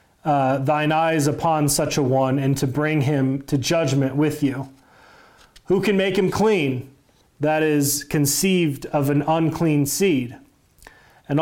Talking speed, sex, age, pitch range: 145 wpm, male, 30-49, 140-165 Hz